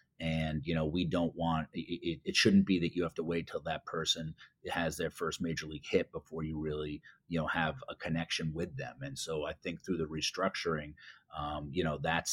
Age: 30-49